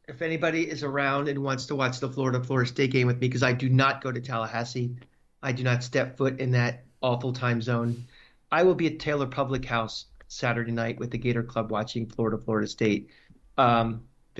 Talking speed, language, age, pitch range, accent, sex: 215 wpm, English, 40-59, 125-145 Hz, American, male